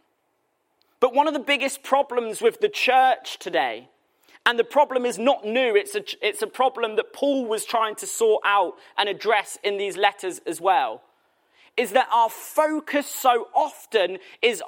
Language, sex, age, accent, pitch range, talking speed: English, male, 30-49, British, 225-360 Hz, 170 wpm